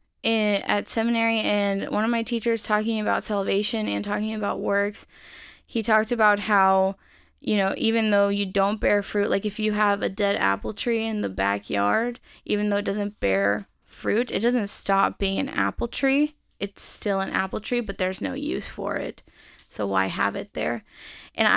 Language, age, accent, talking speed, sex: English, 10-29, American, 185 wpm, female